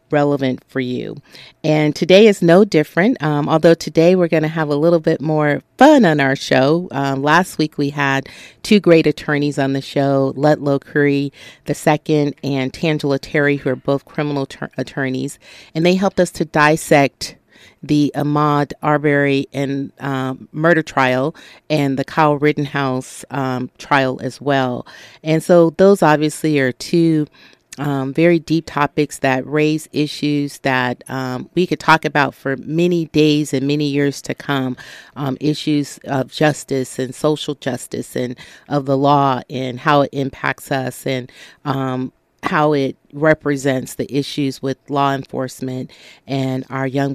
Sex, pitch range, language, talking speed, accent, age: female, 135-155 Hz, English, 160 wpm, American, 40-59